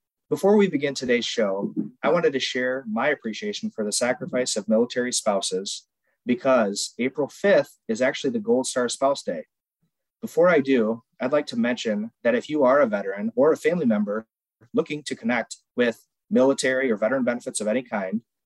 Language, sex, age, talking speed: English, male, 30-49, 180 wpm